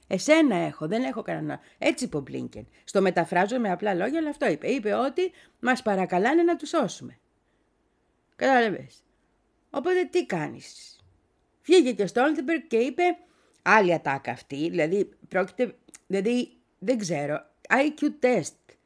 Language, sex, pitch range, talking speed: Greek, female, 185-295 Hz, 135 wpm